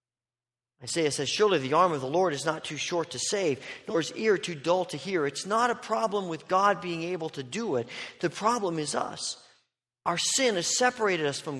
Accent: American